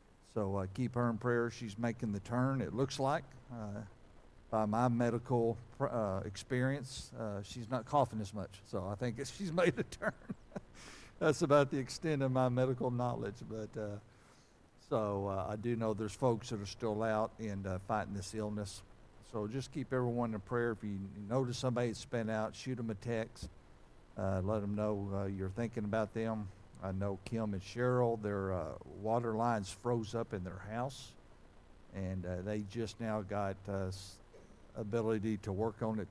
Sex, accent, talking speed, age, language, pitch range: male, American, 180 wpm, 60-79, English, 100-120 Hz